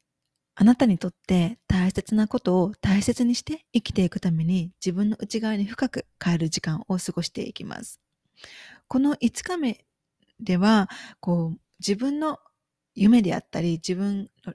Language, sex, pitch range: Japanese, female, 185-245 Hz